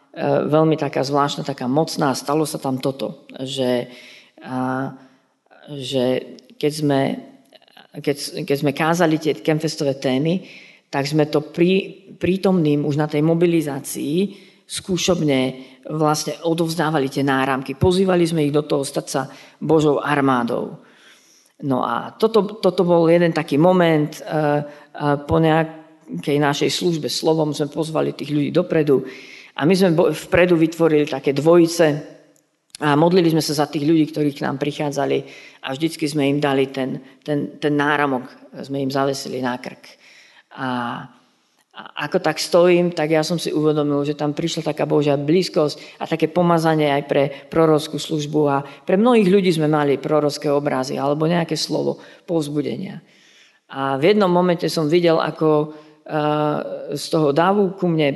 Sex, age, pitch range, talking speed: female, 40-59, 140-165 Hz, 140 wpm